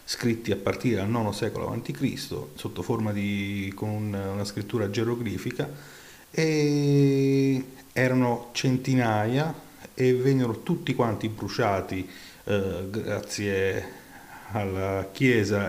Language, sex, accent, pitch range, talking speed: Italian, male, native, 100-125 Hz, 100 wpm